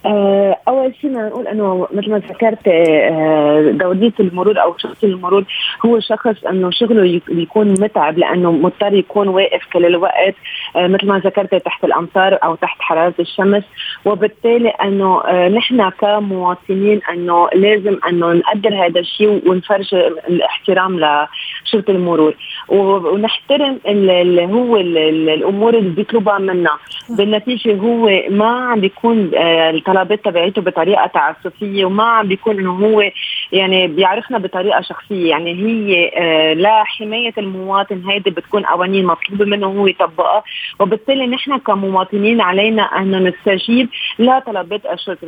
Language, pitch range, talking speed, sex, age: Arabic, 180-215 Hz, 125 wpm, female, 30-49